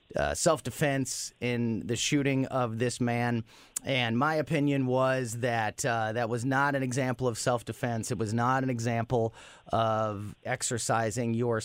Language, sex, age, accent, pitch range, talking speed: English, male, 30-49, American, 115-145 Hz, 150 wpm